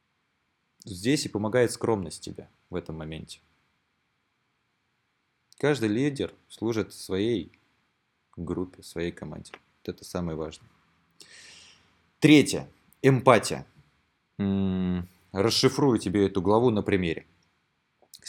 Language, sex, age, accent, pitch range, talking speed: Russian, male, 20-39, native, 95-140 Hz, 90 wpm